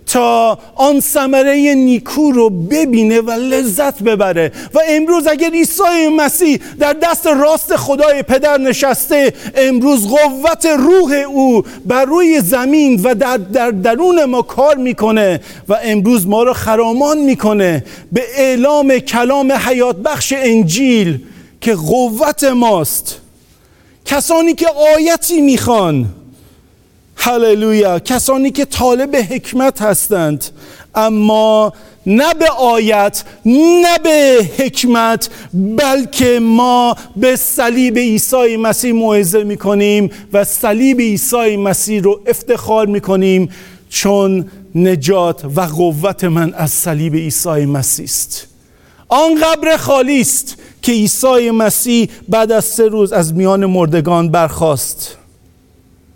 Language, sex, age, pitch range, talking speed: English, male, 50-69, 200-275 Hz, 115 wpm